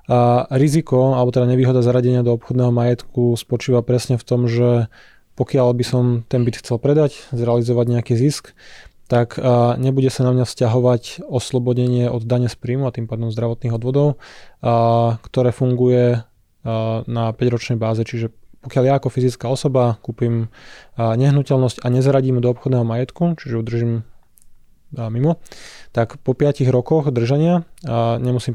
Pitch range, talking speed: 115-130 Hz, 140 wpm